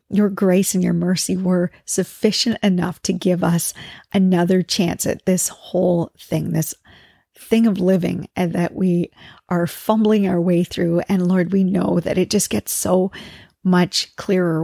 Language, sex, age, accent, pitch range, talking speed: English, female, 40-59, American, 175-195 Hz, 165 wpm